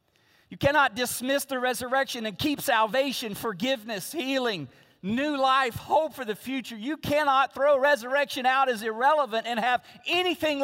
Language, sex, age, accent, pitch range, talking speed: English, male, 40-59, American, 155-255 Hz, 140 wpm